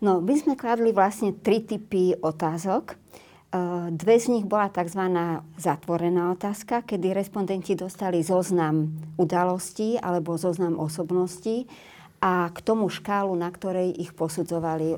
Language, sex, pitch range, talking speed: Slovak, male, 170-200 Hz, 125 wpm